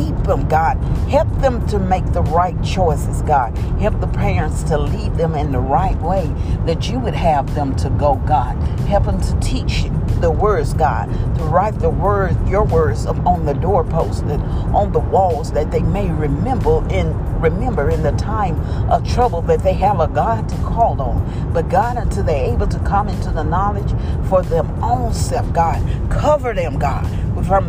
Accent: American